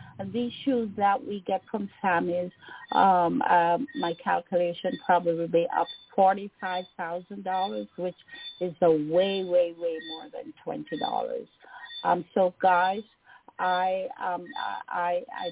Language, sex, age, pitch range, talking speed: English, female, 50-69, 185-260 Hz, 130 wpm